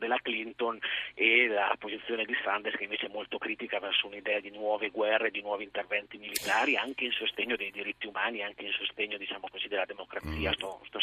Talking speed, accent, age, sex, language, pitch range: 195 wpm, native, 40-59, male, Italian, 105-120 Hz